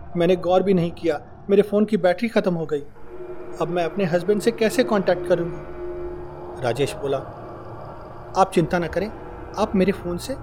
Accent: native